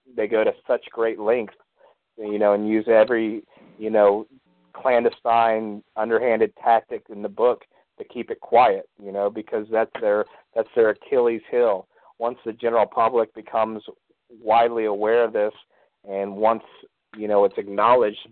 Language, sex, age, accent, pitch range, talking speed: English, male, 40-59, American, 100-125 Hz, 155 wpm